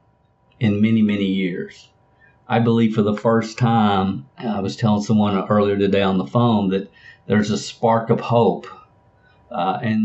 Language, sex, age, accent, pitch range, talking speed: English, male, 50-69, American, 100-115 Hz, 160 wpm